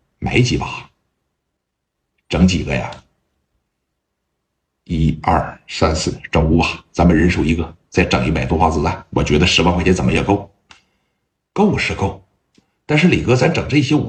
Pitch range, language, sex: 75-110 Hz, Chinese, male